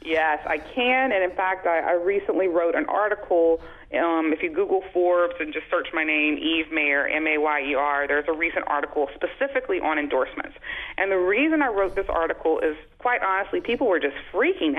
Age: 30-49